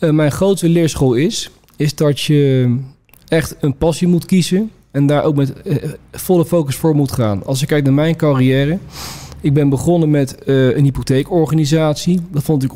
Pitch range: 125-155 Hz